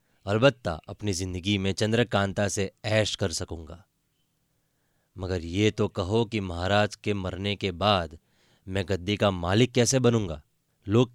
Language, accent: Hindi, native